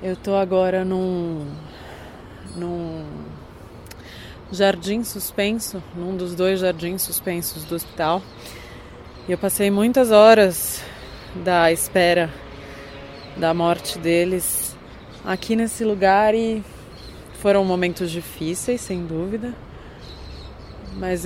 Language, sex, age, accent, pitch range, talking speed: Portuguese, female, 20-39, Brazilian, 170-195 Hz, 95 wpm